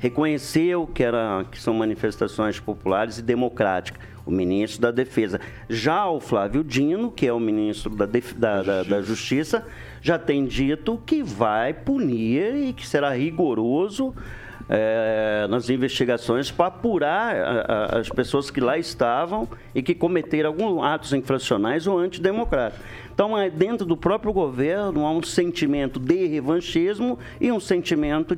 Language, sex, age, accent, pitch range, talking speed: Portuguese, male, 50-69, Brazilian, 120-170 Hz, 145 wpm